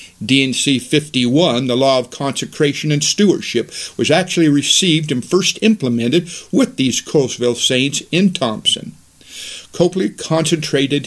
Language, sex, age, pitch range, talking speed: English, male, 50-69, 110-145 Hz, 120 wpm